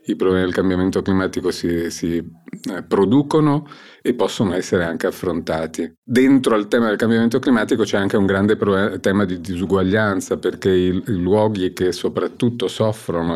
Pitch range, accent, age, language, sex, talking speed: 85-105 Hz, native, 40-59, Italian, male, 150 wpm